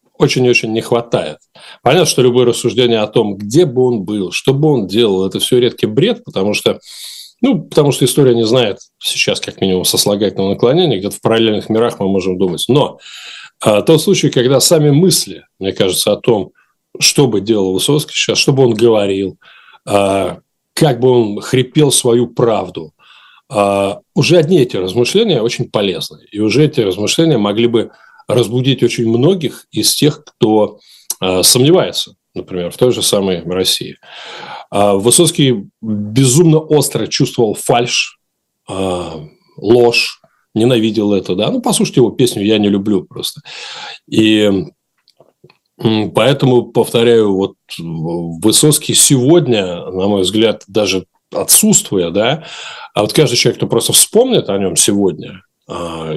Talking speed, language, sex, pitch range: 145 wpm, Russian, male, 100-130 Hz